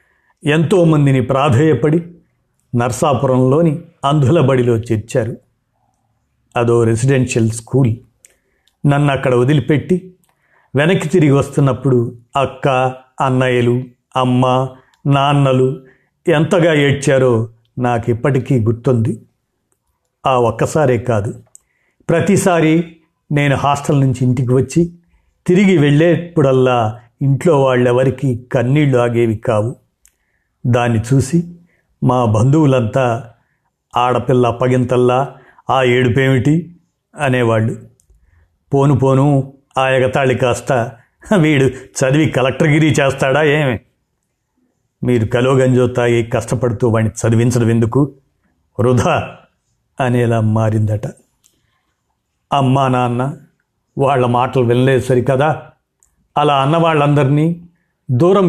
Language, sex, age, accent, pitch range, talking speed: Telugu, male, 50-69, native, 125-150 Hz, 80 wpm